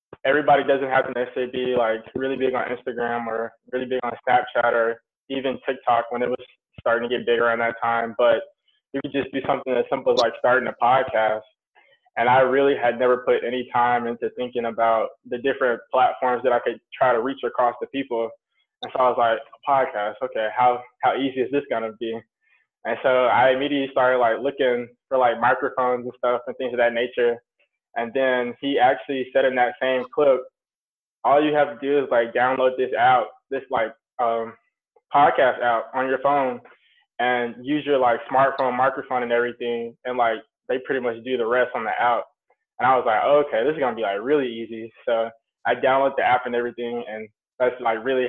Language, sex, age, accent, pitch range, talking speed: English, male, 20-39, American, 115-130 Hz, 210 wpm